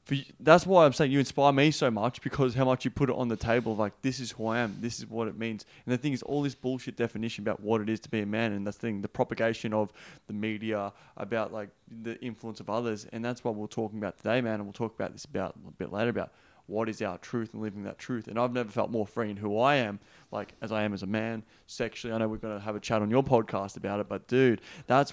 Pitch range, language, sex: 115-175 Hz, English, male